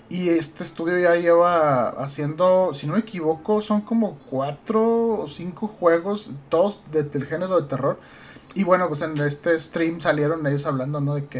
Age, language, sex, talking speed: 30-49, Spanish, male, 180 wpm